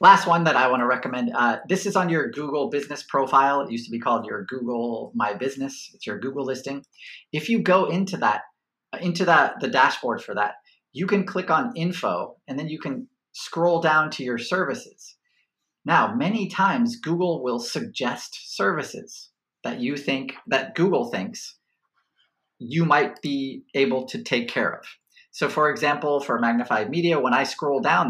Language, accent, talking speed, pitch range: English, American, 180 wpm, 135-175 Hz